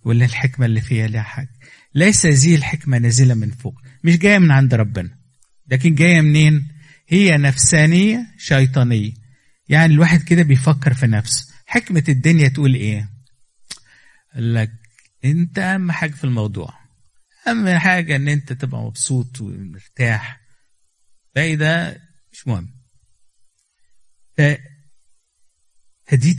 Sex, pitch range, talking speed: male, 120-150 Hz, 115 wpm